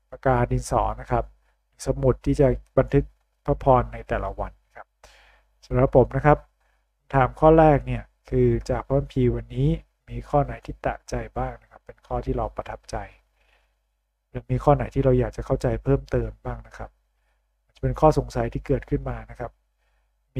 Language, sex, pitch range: Thai, male, 115-135 Hz